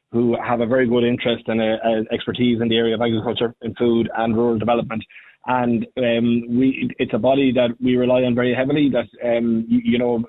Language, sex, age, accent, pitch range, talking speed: English, male, 20-39, Irish, 115-125 Hz, 210 wpm